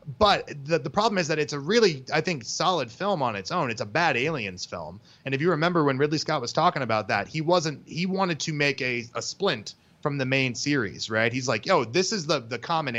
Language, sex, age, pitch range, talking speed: English, male, 30-49, 115-155 Hz, 250 wpm